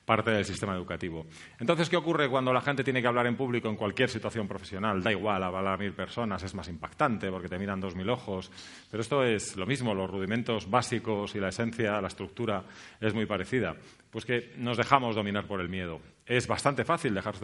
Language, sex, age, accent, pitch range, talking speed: Spanish, male, 30-49, Spanish, 100-120 Hz, 210 wpm